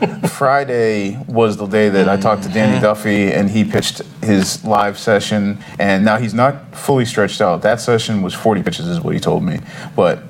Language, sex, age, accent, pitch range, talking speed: English, male, 30-49, American, 95-115 Hz, 200 wpm